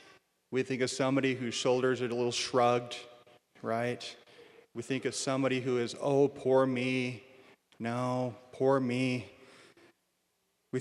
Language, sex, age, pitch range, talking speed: English, male, 30-49, 125-145 Hz, 135 wpm